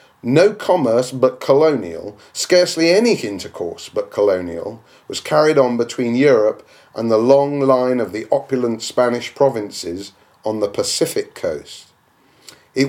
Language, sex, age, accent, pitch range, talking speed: English, male, 40-59, British, 115-155 Hz, 130 wpm